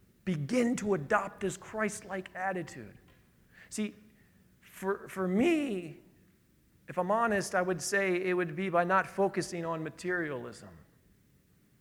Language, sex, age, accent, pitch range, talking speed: English, male, 40-59, American, 180-215 Hz, 120 wpm